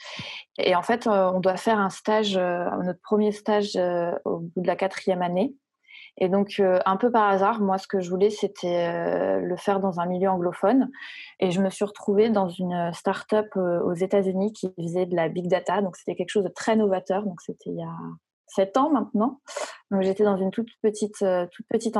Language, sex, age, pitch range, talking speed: French, female, 20-39, 185-220 Hz, 200 wpm